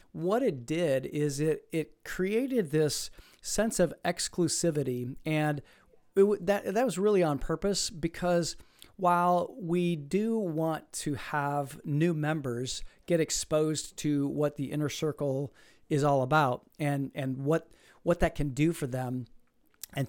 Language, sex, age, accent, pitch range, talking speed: English, male, 40-59, American, 140-170 Hz, 145 wpm